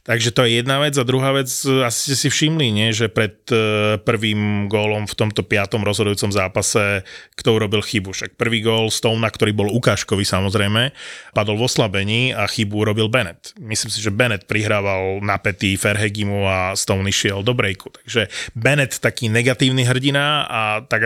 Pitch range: 105-125 Hz